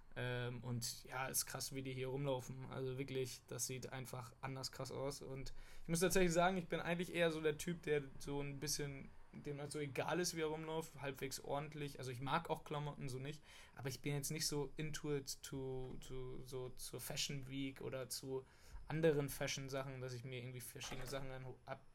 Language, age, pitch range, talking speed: German, 20-39, 125-145 Hz, 215 wpm